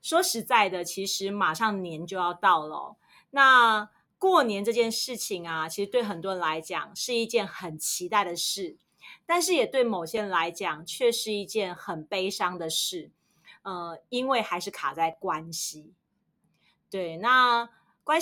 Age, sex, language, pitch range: 30-49, female, Chinese, 180-235 Hz